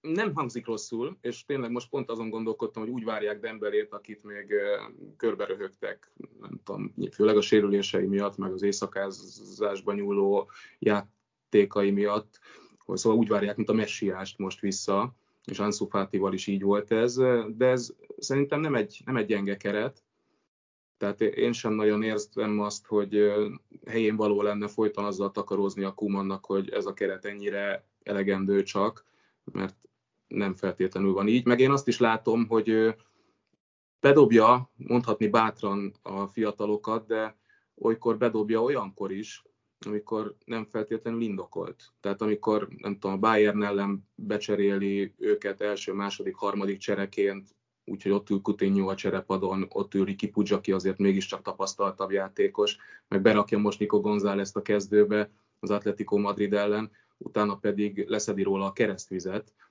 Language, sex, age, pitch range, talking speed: Hungarian, male, 20-39, 100-110 Hz, 145 wpm